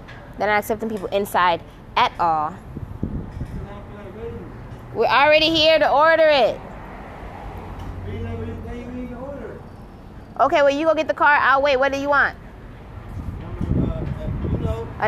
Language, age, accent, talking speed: English, 20-39, American, 105 wpm